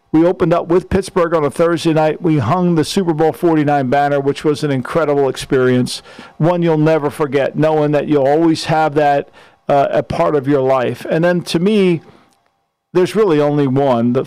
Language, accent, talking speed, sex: English, American, 200 wpm, male